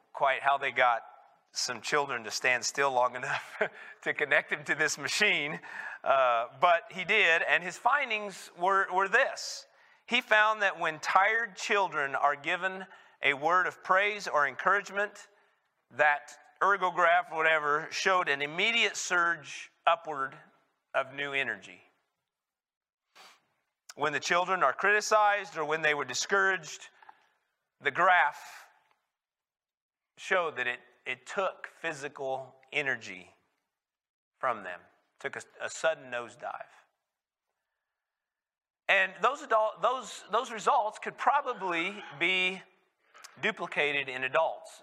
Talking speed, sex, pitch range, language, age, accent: 125 wpm, male, 150-220 Hz, English, 40-59, American